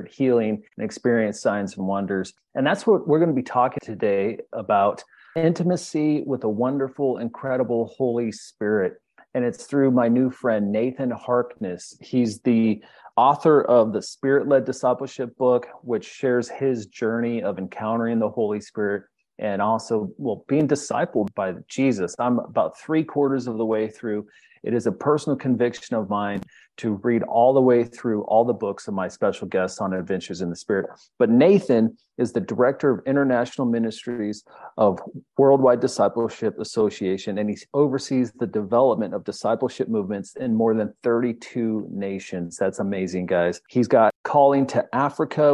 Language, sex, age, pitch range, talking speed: English, male, 30-49, 110-130 Hz, 160 wpm